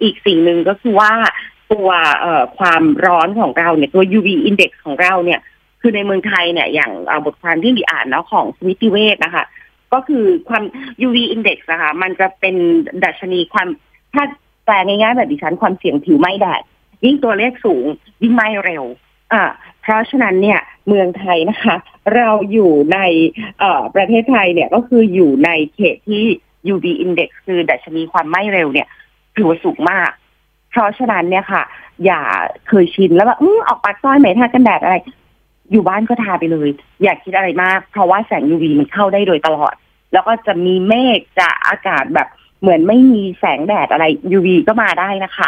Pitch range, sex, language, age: 175-225 Hz, female, Thai, 30-49